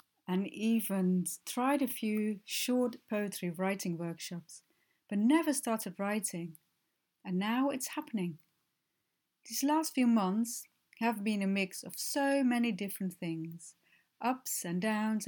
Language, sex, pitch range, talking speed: English, female, 175-220 Hz, 130 wpm